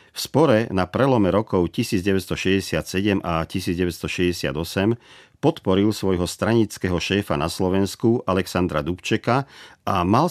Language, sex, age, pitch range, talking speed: Czech, male, 50-69, 85-105 Hz, 105 wpm